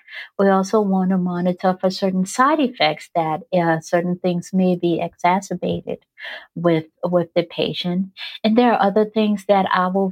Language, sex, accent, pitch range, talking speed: English, female, American, 175-210 Hz, 165 wpm